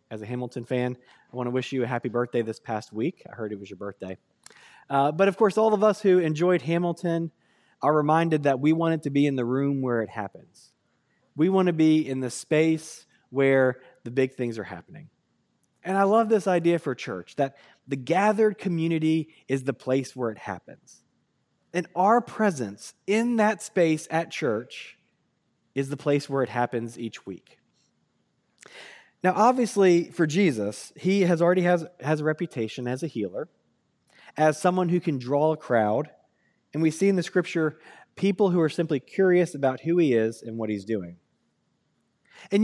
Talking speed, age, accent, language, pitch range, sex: 185 wpm, 20-39, American, English, 130-180 Hz, male